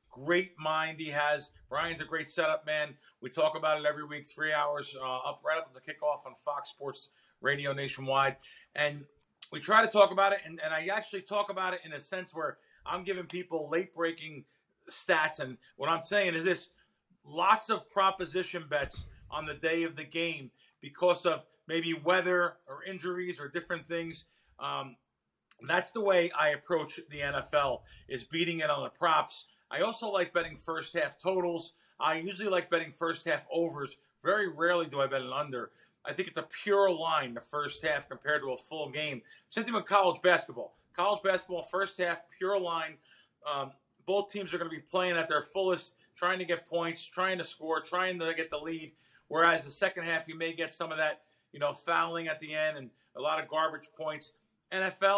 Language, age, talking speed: English, 40-59, 195 wpm